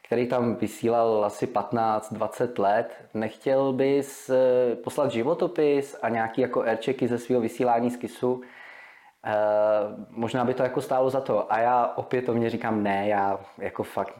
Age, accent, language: 20-39, native, Czech